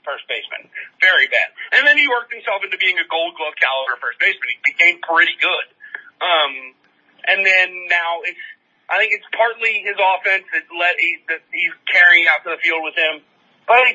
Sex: male